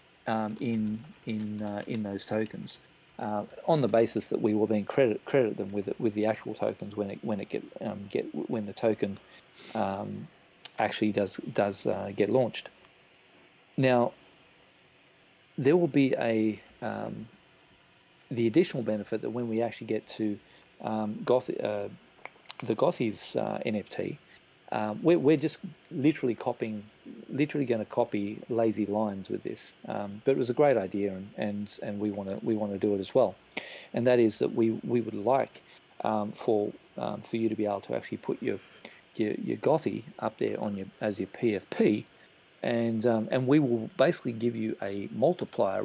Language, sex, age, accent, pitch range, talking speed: English, male, 40-59, Australian, 105-120 Hz, 180 wpm